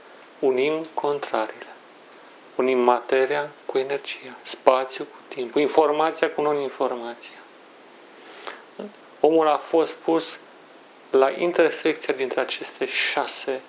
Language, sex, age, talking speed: Romanian, male, 40-59, 90 wpm